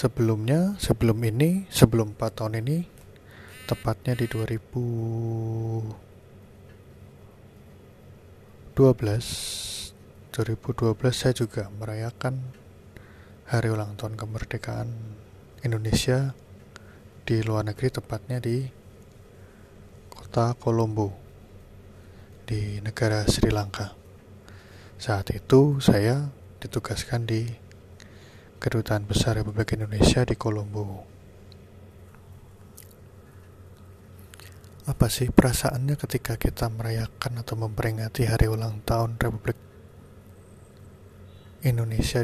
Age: 20-39